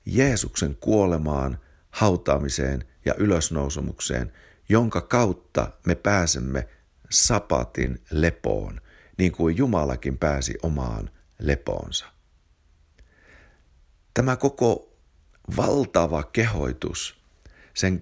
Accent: native